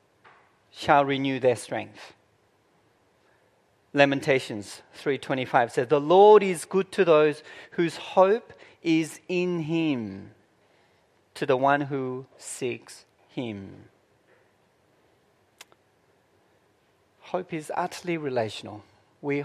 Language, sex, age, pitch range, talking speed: English, male, 40-59, 125-160 Hz, 90 wpm